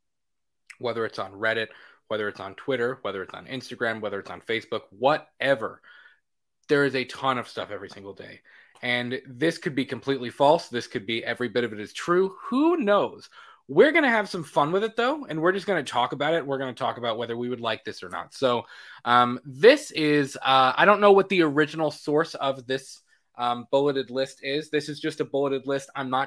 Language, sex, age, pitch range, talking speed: English, male, 20-39, 120-155 Hz, 225 wpm